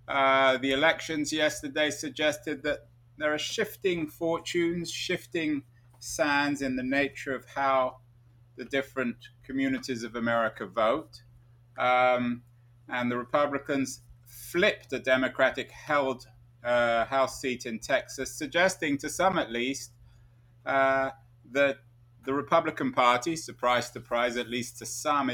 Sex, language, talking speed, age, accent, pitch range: male, English, 125 wpm, 30-49, British, 120-135 Hz